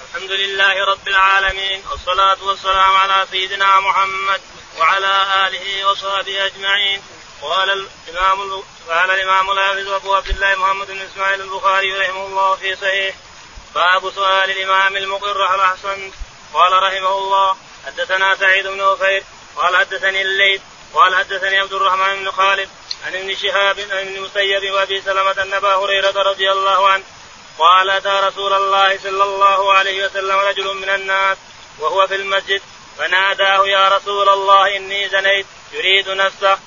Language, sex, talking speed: Arabic, male, 140 wpm